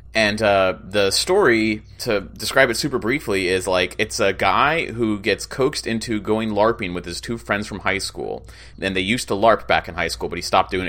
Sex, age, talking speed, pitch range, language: male, 30-49, 220 wpm, 95-115 Hz, English